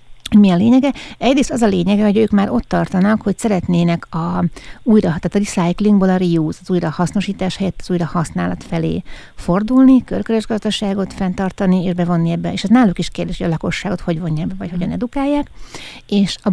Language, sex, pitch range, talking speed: Hungarian, female, 165-205 Hz, 175 wpm